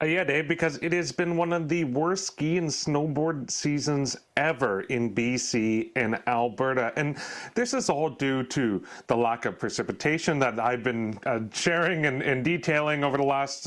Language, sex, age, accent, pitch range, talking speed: English, male, 30-49, American, 125-165 Hz, 180 wpm